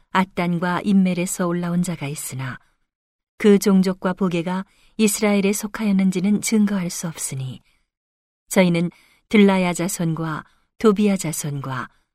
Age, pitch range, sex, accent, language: 40-59, 160-205 Hz, female, native, Korean